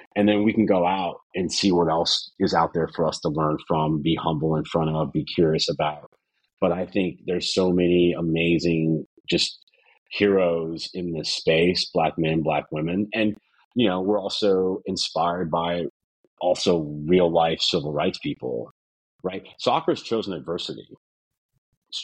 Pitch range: 75-90 Hz